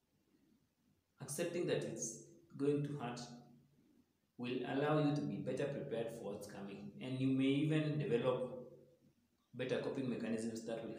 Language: English